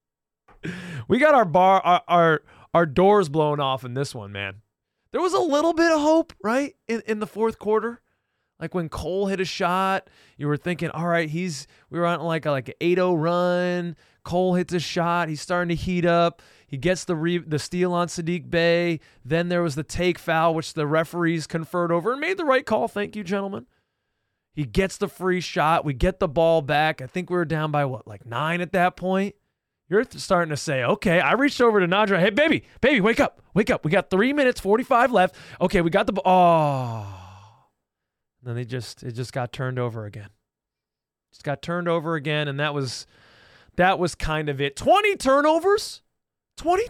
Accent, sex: American, male